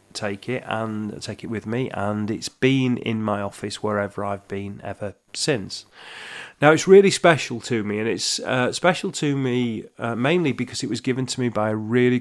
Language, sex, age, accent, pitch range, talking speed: English, male, 30-49, British, 105-125 Hz, 200 wpm